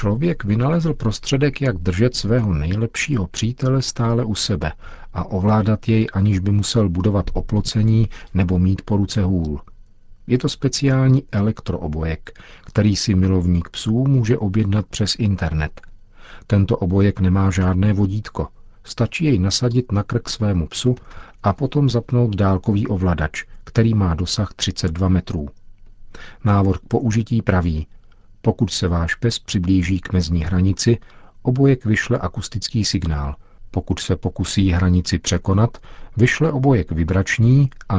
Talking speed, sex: 130 wpm, male